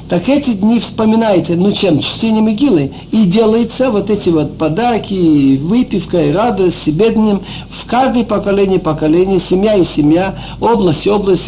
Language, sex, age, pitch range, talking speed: Russian, male, 60-79, 180-250 Hz, 150 wpm